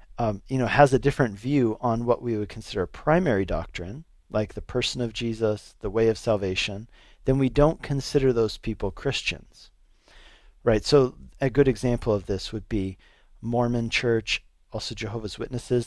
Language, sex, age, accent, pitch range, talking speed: English, male, 40-59, American, 105-130 Hz, 165 wpm